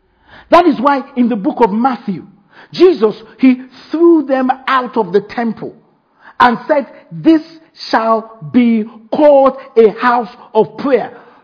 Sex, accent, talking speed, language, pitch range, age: male, Nigerian, 135 wpm, English, 230-315 Hz, 50-69